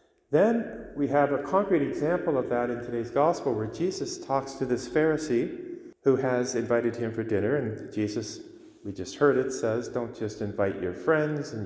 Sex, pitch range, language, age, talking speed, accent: male, 110-160 Hz, English, 40-59, 185 wpm, American